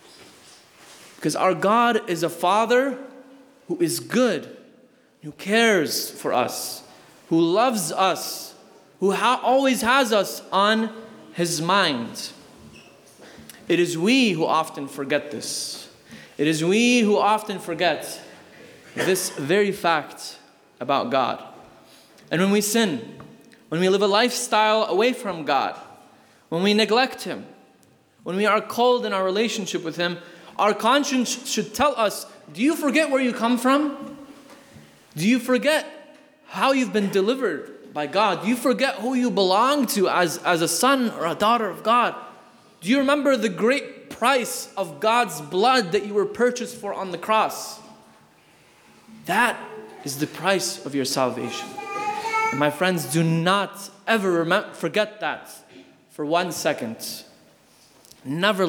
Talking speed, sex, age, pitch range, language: 140 wpm, male, 20-39, 180-255 Hz, English